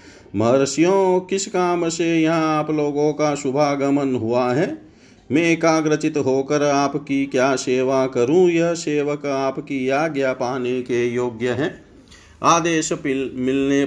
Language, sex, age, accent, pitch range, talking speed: Hindi, male, 50-69, native, 125-150 Hz, 120 wpm